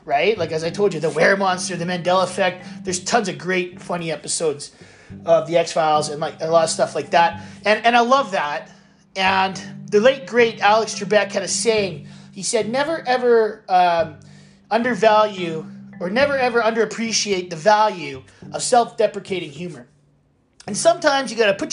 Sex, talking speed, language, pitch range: male, 180 wpm, English, 180-230 Hz